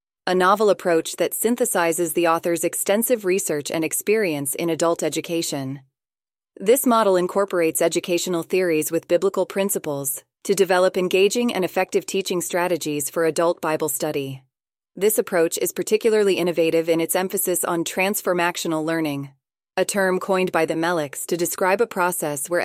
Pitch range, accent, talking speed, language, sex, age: 160-190 Hz, American, 145 wpm, English, female, 20-39